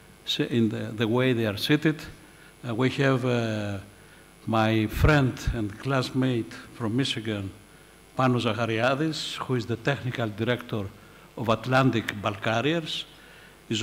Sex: male